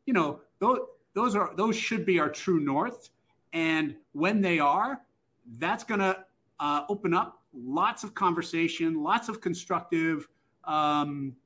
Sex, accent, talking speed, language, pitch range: male, American, 140 wpm, English, 135-175 Hz